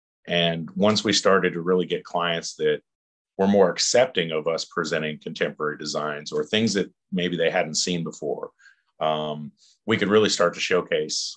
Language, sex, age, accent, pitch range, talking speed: English, male, 40-59, American, 80-100 Hz, 170 wpm